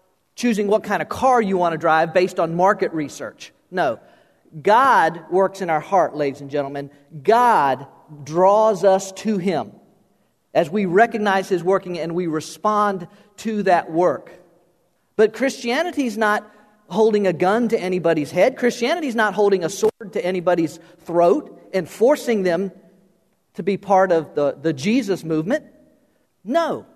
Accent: American